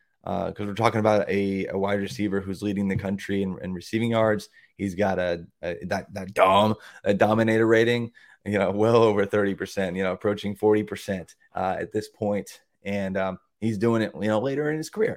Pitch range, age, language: 95-115 Hz, 20-39, English